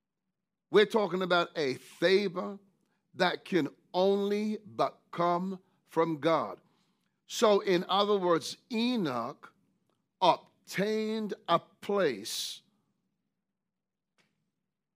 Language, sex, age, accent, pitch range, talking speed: English, male, 50-69, American, 175-205 Hz, 80 wpm